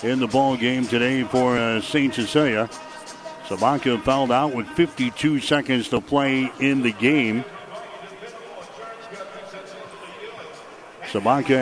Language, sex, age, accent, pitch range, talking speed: English, male, 60-79, American, 120-145 Hz, 110 wpm